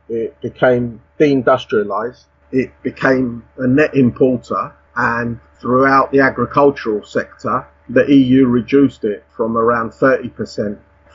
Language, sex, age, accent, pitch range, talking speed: English, male, 40-59, British, 120-140 Hz, 110 wpm